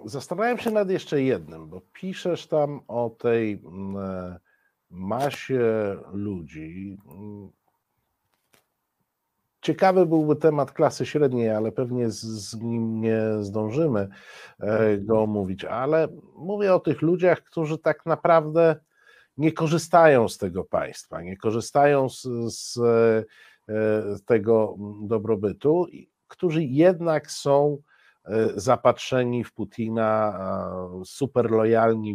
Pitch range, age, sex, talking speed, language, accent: 105-150 Hz, 50-69, male, 95 wpm, Polish, native